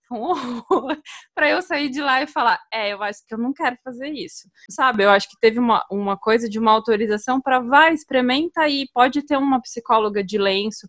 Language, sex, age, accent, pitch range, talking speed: Portuguese, female, 20-39, Brazilian, 205-265 Hz, 205 wpm